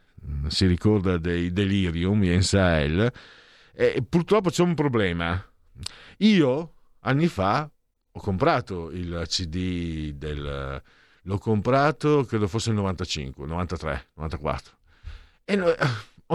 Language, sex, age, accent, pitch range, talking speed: Italian, male, 50-69, native, 85-135 Hz, 105 wpm